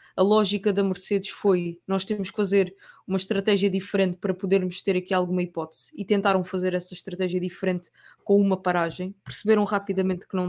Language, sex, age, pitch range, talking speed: English, female, 20-39, 185-215 Hz, 175 wpm